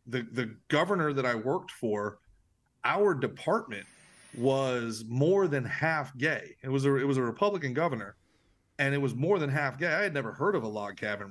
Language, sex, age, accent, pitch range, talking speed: English, male, 30-49, American, 115-145 Hz, 195 wpm